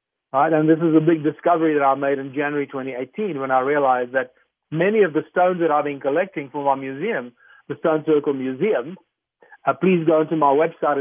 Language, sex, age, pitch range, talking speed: English, male, 50-69, 150-190 Hz, 215 wpm